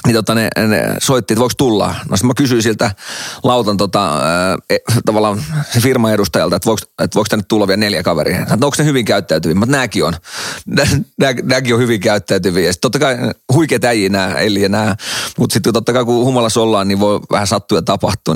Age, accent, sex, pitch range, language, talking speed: 30-49, native, male, 110-145 Hz, Finnish, 195 wpm